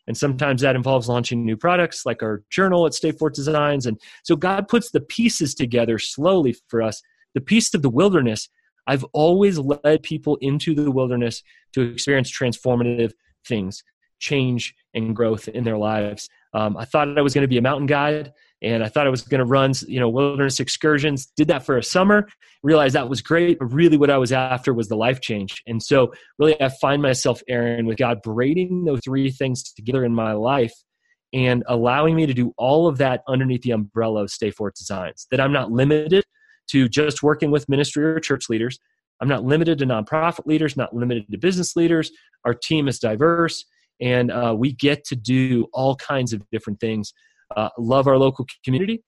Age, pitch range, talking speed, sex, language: 30-49, 120-155 Hz, 200 wpm, male, English